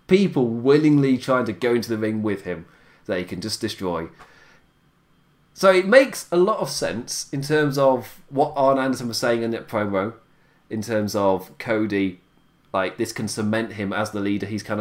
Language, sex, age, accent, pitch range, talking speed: English, male, 30-49, British, 110-165 Hz, 190 wpm